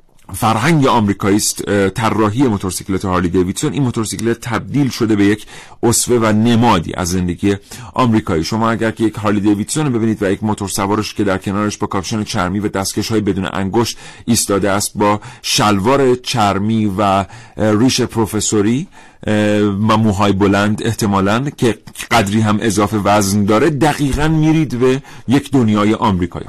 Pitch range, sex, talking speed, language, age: 105-130 Hz, male, 145 wpm, Persian, 40-59